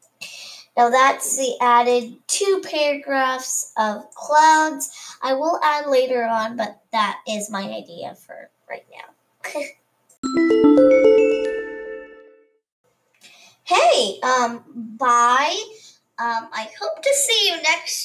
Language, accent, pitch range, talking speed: English, American, 245-320 Hz, 105 wpm